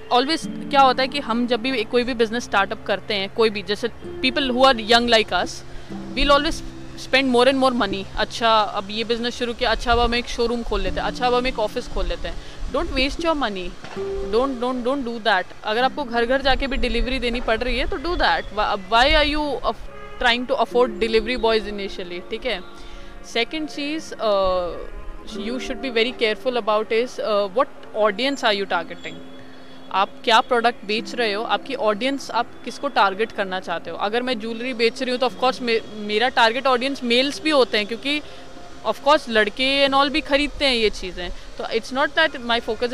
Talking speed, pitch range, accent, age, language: 210 wpm, 215-260 Hz, native, 20-39, Hindi